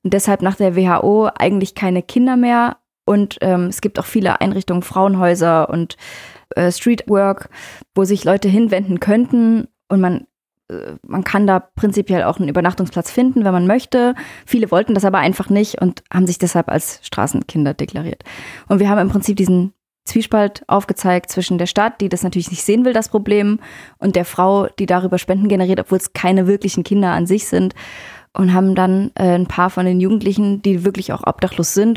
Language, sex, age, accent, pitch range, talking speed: German, female, 20-39, German, 175-200 Hz, 180 wpm